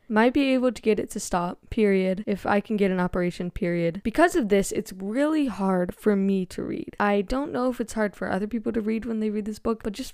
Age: 10-29